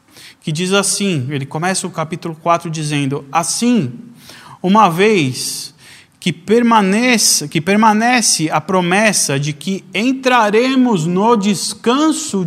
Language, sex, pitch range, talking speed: Portuguese, male, 150-205 Hz, 105 wpm